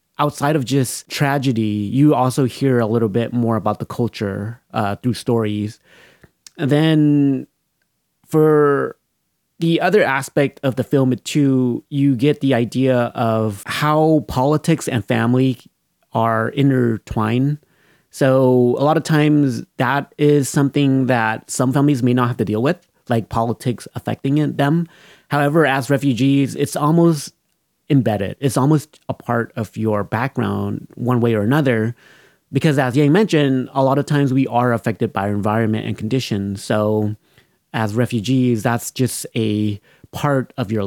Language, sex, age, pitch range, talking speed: English, male, 30-49, 115-145 Hz, 145 wpm